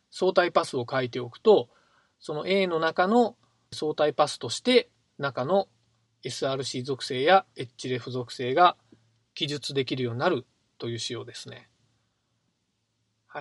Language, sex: Japanese, male